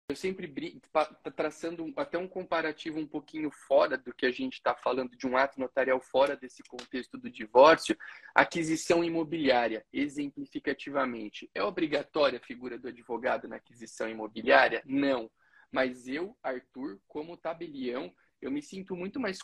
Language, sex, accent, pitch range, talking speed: Portuguese, male, Brazilian, 130-170 Hz, 145 wpm